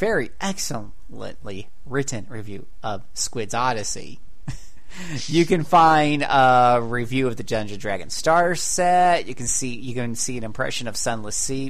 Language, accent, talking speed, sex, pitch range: English, American, 150 wpm, male, 115-140 Hz